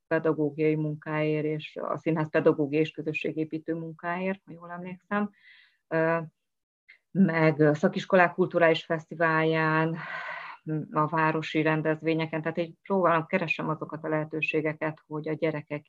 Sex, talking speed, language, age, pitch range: female, 115 wpm, Hungarian, 30-49, 150-165 Hz